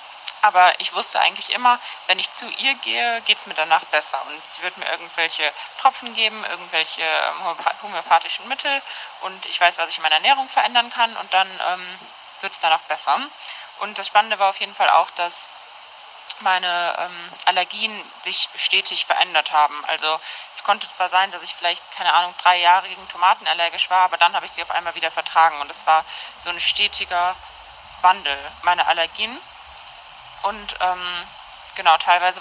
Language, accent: German, German